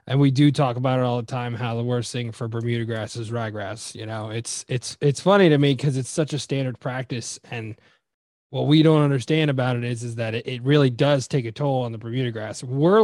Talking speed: 250 wpm